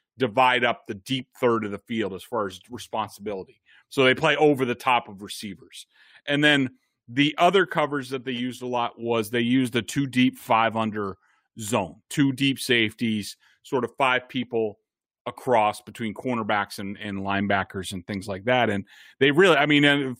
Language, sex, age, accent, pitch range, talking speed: English, male, 30-49, American, 110-145 Hz, 180 wpm